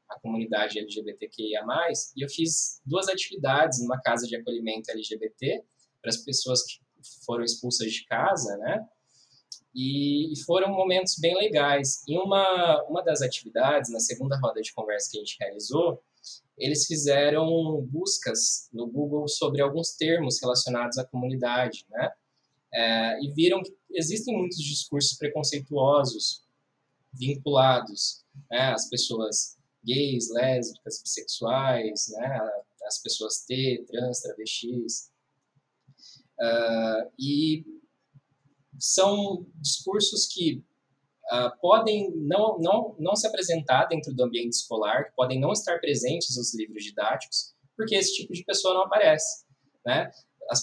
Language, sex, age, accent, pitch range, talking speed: Portuguese, male, 20-39, Brazilian, 125-165 Hz, 125 wpm